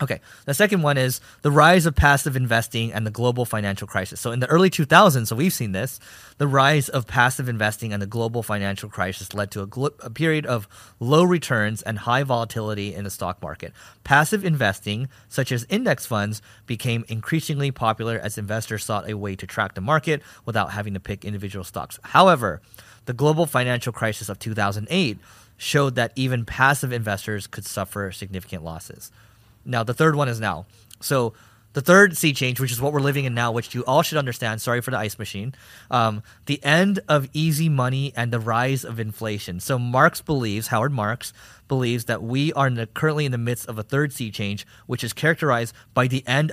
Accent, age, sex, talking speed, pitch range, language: American, 30-49, male, 195 wpm, 105-140 Hz, English